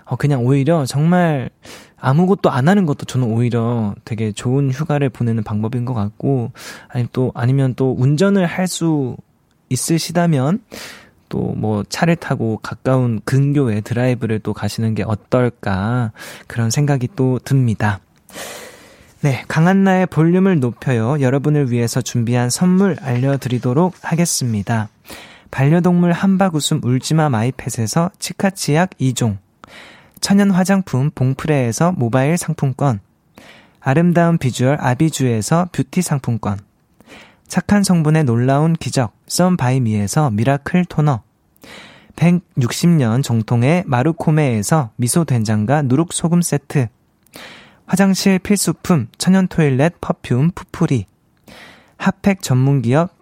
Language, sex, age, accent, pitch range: Korean, male, 20-39, native, 120-170 Hz